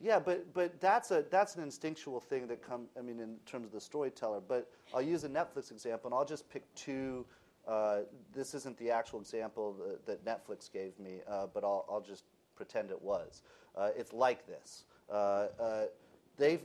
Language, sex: English, male